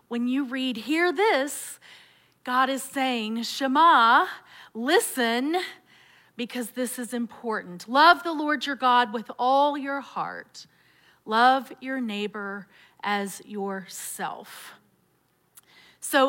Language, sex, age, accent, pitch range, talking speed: English, female, 40-59, American, 210-250 Hz, 105 wpm